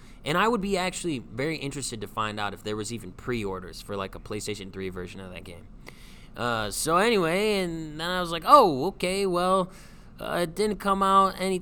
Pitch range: 115-175 Hz